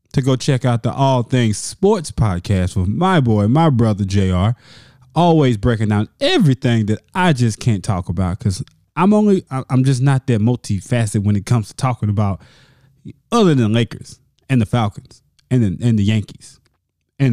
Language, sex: English, male